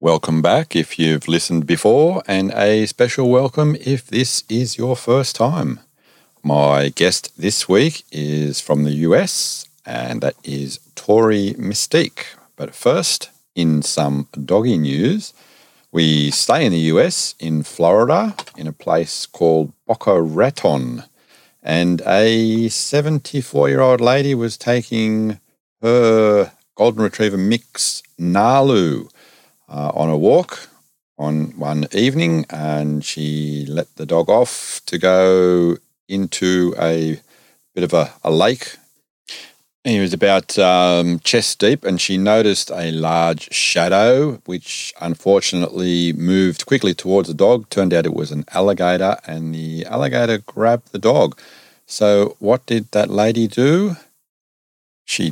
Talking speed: 130 wpm